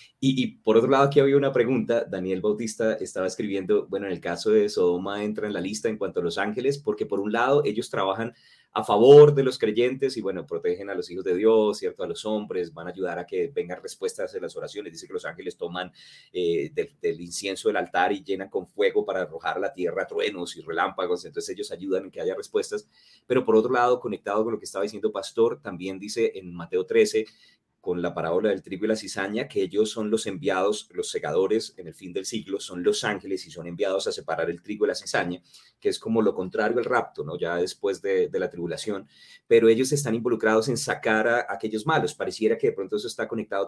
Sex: male